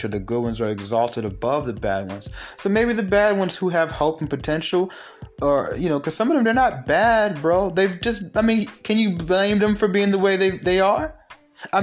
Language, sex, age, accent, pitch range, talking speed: English, male, 30-49, American, 115-185 Hz, 235 wpm